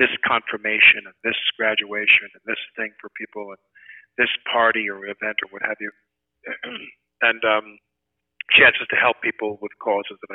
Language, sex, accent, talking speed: English, male, American, 160 wpm